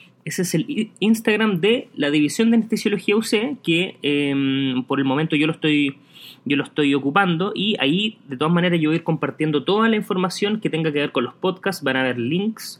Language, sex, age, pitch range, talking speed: Spanish, male, 20-39, 135-175 Hz, 205 wpm